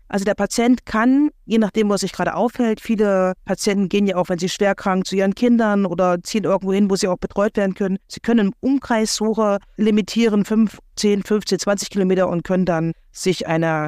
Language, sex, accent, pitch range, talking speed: German, female, German, 180-215 Hz, 200 wpm